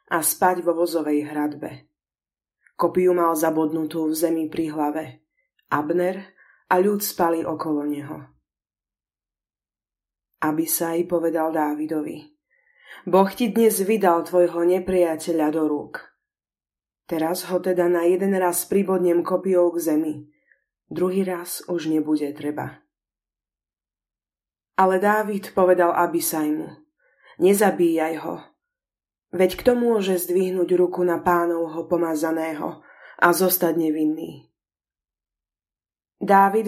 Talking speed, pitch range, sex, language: 100 wpm, 160-195 Hz, female, Slovak